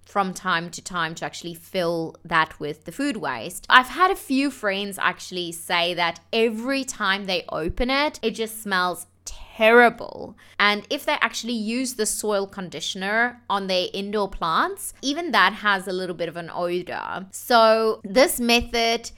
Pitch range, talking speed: 175-240 Hz, 165 wpm